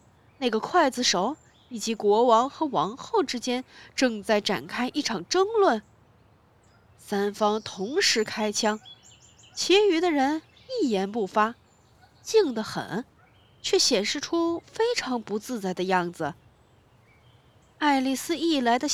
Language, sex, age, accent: Chinese, female, 20-39, native